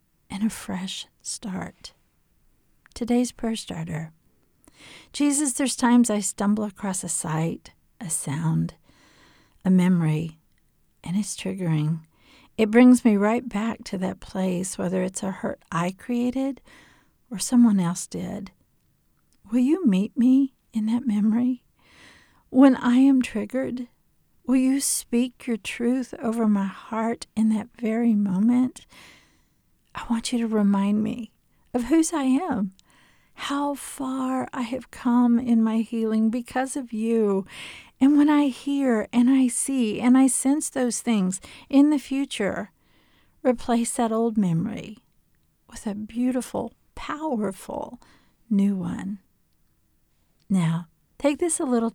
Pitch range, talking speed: 195-255 Hz, 130 wpm